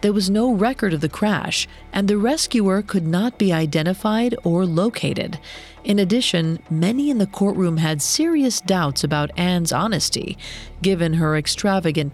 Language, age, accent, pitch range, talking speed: English, 40-59, American, 150-215 Hz, 155 wpm